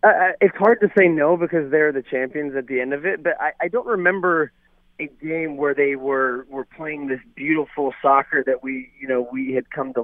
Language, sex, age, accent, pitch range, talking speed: English, male, 30-49, American, 135-160 Hz, 225 wpm